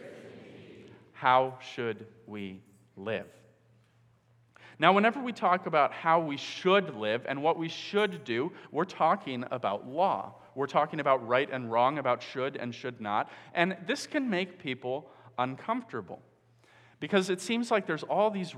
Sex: male